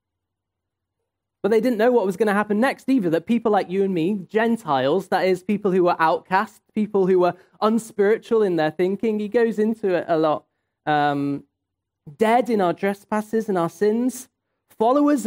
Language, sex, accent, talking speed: English, male, British, 180 wpm